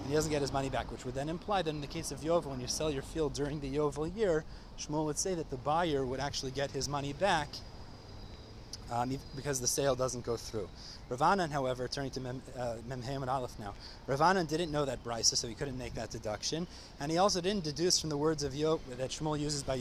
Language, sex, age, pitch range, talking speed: English, male, 20-39, 130-160 Hz, 240 wpm